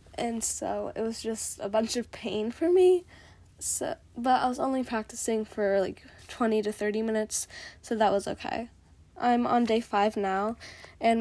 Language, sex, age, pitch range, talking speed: English, female, 10-29, 210-235 Hz, 175 wpm